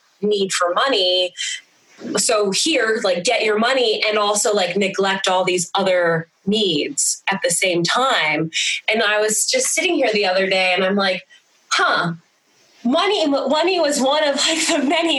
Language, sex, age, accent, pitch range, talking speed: English, female, 20-39, American, 180-255 Hz, 165 wpm